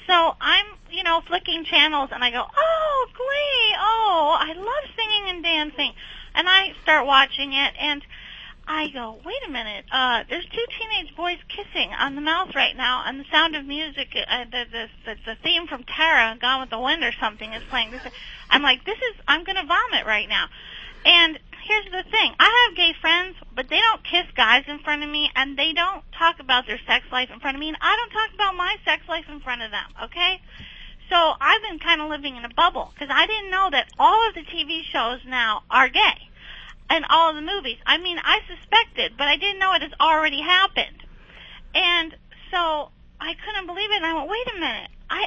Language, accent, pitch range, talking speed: English, American, 275-370 Hz, 215 wpm